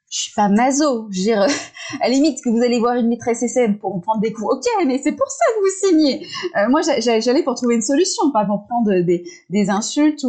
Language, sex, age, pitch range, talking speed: French, female, 20-39, 185-255 Hz, 225 wpm